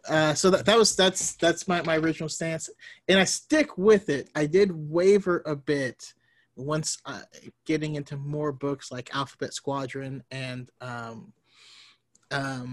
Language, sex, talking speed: English, male, 150 wpm